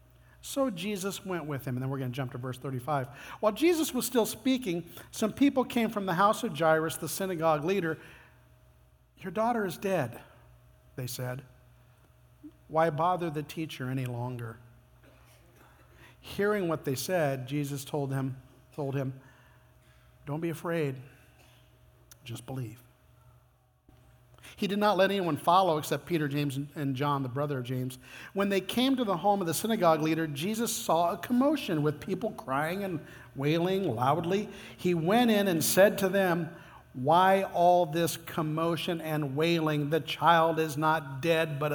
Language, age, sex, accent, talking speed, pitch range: English, 50-69, male, American, 155 wpm, 135-190 Hz